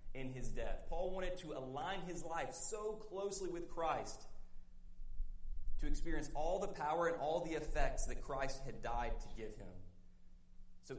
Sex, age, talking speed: male, 30-49, 165 wpm